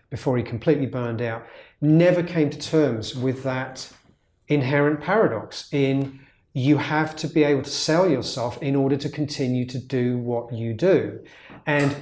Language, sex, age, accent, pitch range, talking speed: English, male, 40-59, British, 115-160 Hz, 160 wpm